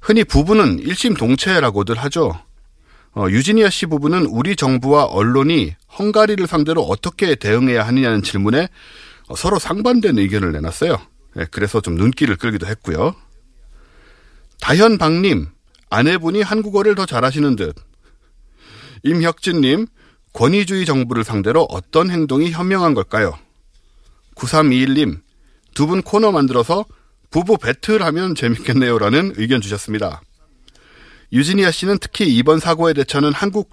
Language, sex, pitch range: Korean, male, 110-175 Hz